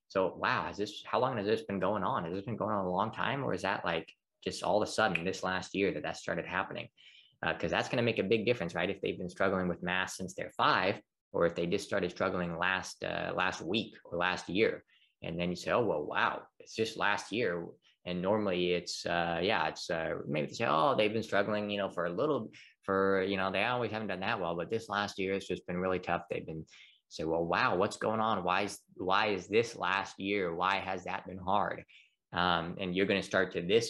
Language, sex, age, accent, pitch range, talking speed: English, male, 20-39, American, 90-100 Hz, 250 wpm